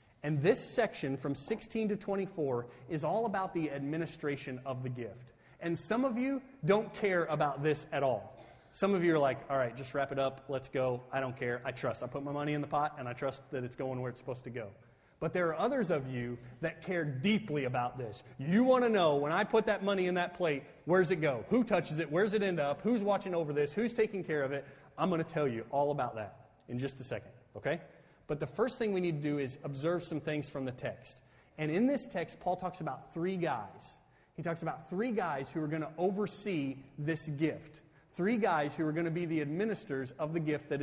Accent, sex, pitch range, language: American, male, 135-180 Hz, English